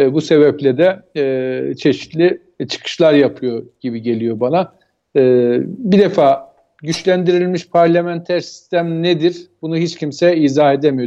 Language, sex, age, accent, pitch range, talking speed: Turkish, male, 50-69, native, 155-190 Hz, 120 wpm